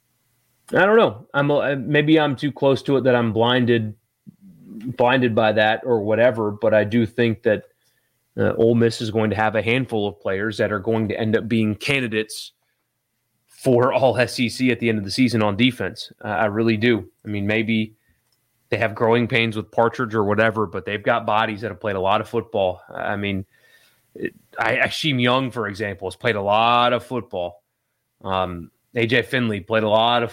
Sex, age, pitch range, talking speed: male, 30-49, 110-125 Hz, 200 wpm